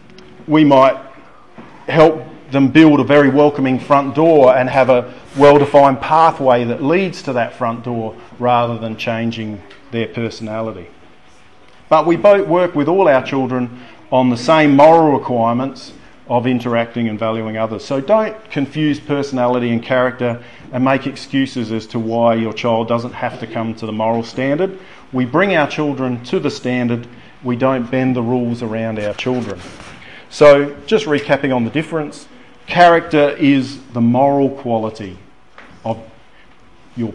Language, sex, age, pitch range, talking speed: English, male, 40-59, 115-150 Hz, 150 wpm